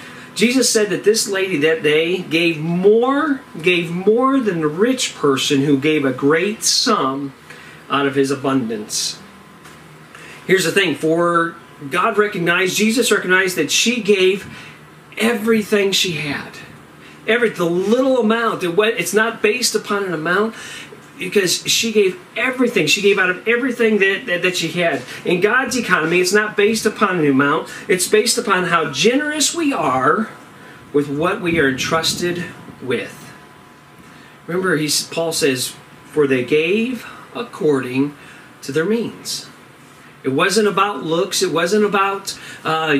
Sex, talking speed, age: male, 140 wpm, 40-59